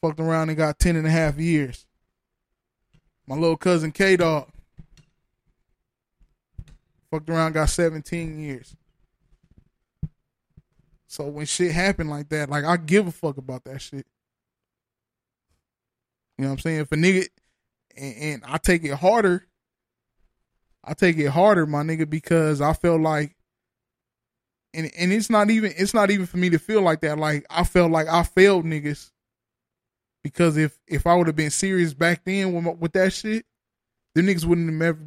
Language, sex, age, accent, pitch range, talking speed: English, male, 20-39, American, 145-175 Hz, 170 wpm